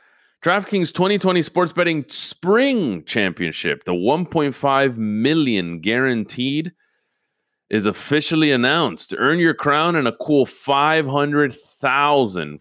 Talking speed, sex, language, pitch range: 95 wpm, male, English, 105-150 Hz